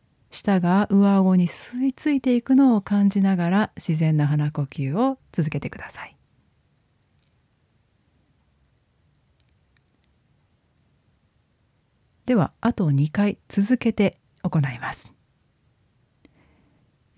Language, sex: Japanese, female